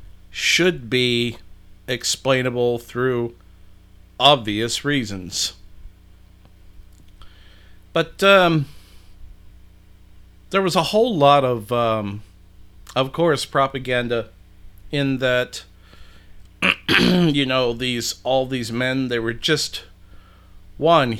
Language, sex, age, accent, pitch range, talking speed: English, male, 50-69, American, 90-125 Hz, 85 wpm